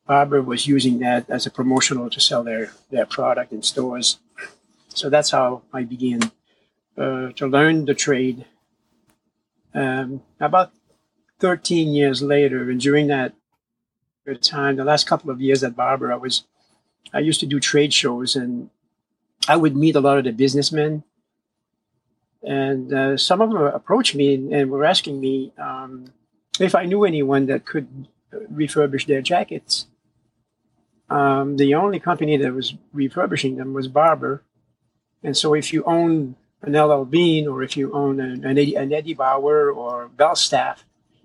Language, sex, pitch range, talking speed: English, male, 130-150 Hz, 155 wpm